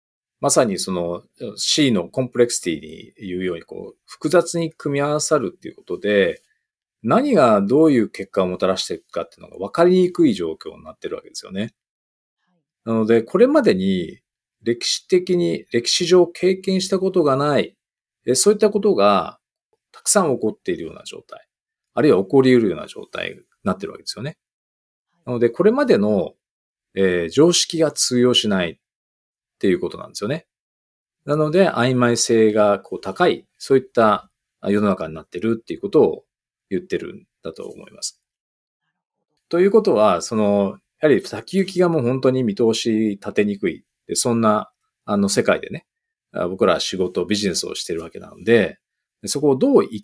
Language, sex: Japanese, male